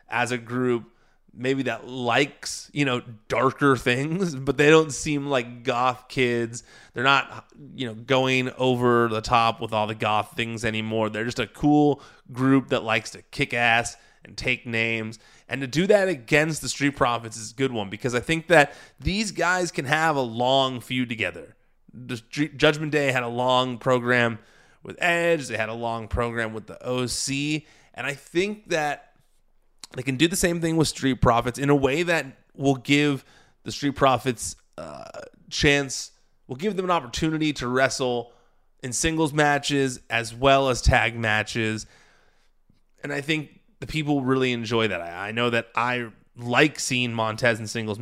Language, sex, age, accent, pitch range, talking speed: English, male, 20-39, American, 115-145 Hz, 175 wpm